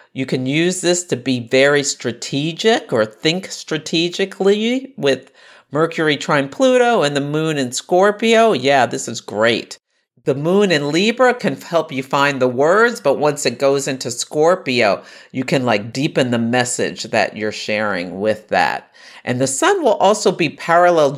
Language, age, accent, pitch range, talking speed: English, 50-69, American, 125-185 Hz, 165 wpm